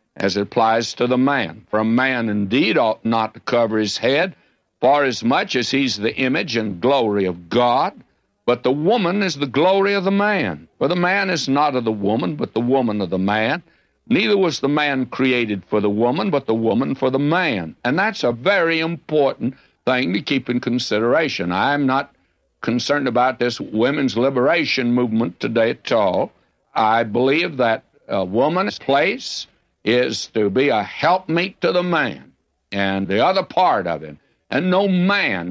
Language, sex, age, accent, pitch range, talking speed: English, male, 60-79, American, 110-145 Hz, 185 wpm